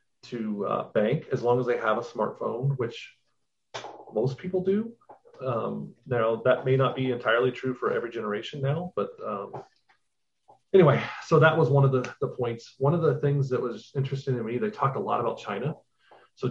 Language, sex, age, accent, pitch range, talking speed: English, male, 30-49, American, 115-140 Hz, 195 wpm